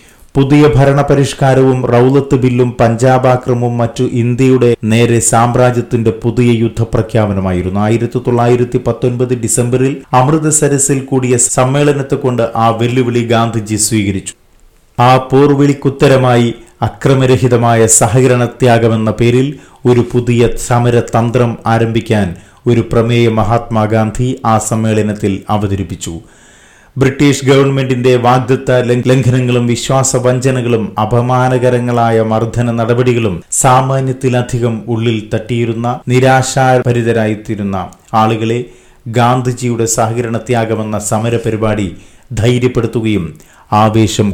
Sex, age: male, 30-49